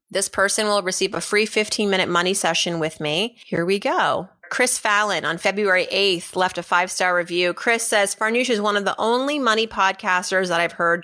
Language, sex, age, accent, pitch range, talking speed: English, female, 30-49, American, 175-220 Hz, 195 wpm